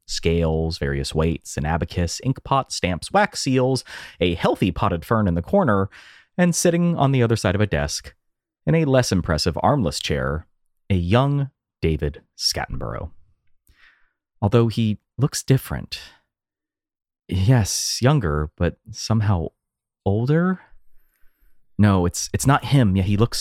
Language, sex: English, male